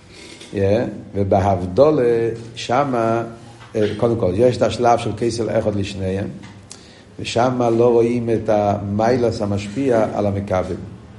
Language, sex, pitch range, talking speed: Hebrew, male, 105-125 Hz, 100 wpm